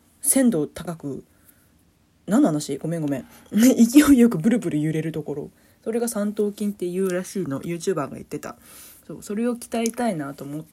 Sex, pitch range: female, 150-225 Hz